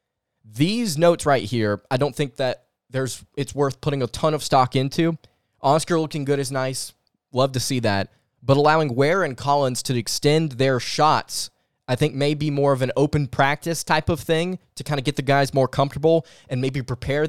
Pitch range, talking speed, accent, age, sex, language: 125-150 Hz, 200 wpm, American, 20-39, male, English